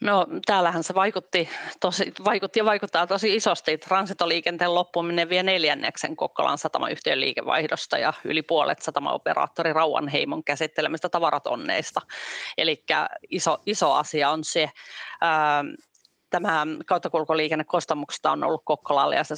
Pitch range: 155-190 Hz